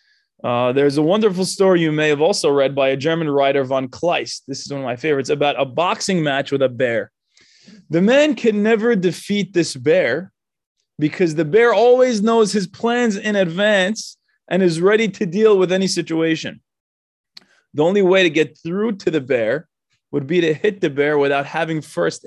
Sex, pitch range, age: male, 145-195 Hz, 20-39